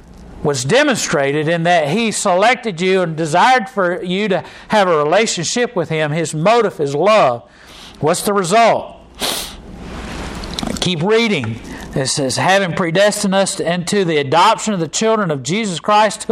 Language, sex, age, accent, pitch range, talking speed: English, male, 50-69, American, 170-225 Hz, 150 wpm